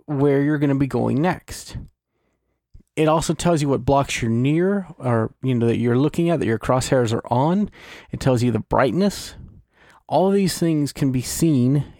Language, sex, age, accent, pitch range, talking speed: English, male, 30-49, American, 120-155 Hz, 195 wpm